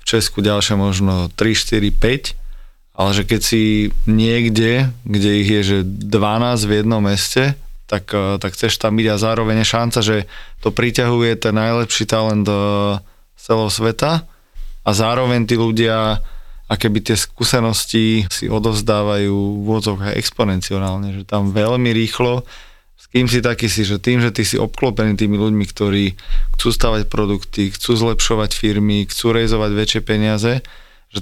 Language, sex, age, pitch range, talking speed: Slovak, male, 20-39, 105-115 Hz, 150 wpm